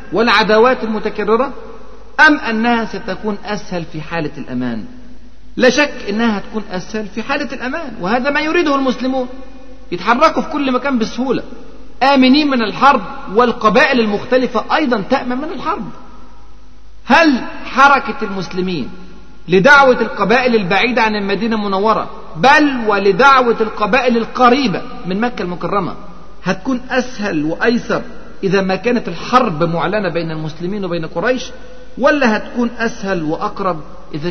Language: Arabic